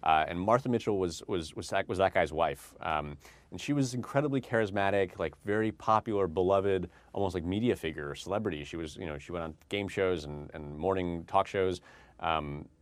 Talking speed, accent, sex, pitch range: 200 wpm, American, male, 80-105 Hz